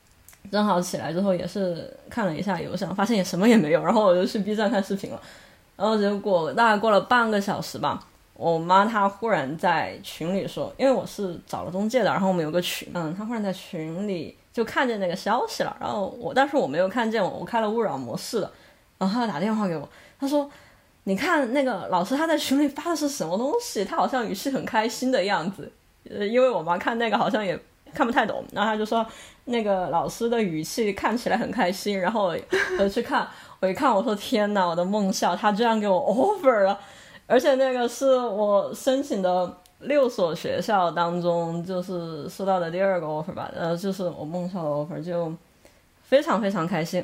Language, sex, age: Chinese, female, 20-39